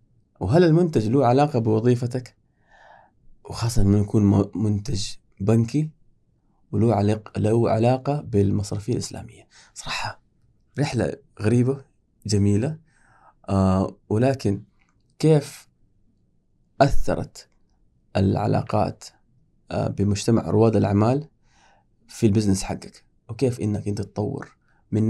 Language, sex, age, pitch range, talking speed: Arabic, male, 20-39, 105-130 Hz, 90 wpm